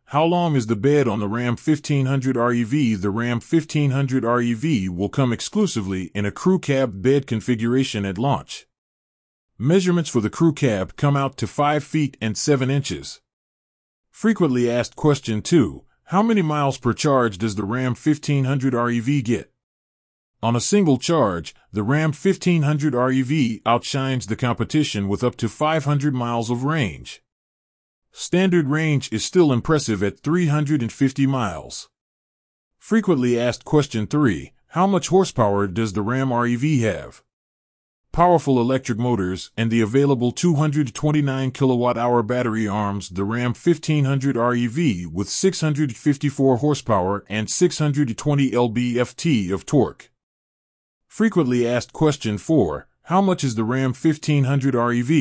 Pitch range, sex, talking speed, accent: 110-150 Hz, male, 135 wpm, American